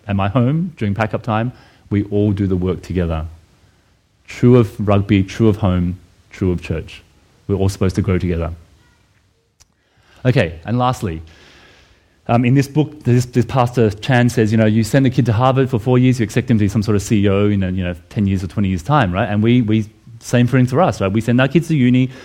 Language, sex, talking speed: English, male, 230 wpm